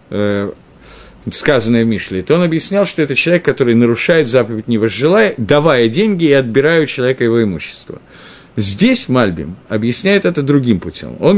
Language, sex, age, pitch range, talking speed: Russian, male, 50-69, 125-180 Hz, 150 wpm